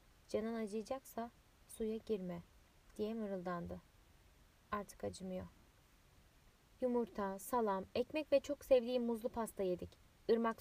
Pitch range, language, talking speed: 205-250 Hz, Turkish, 100 wpm